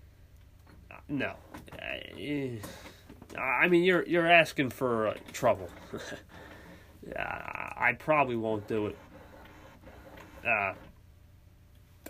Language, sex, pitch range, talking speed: English, male, 95-110 Hz, 70 wpm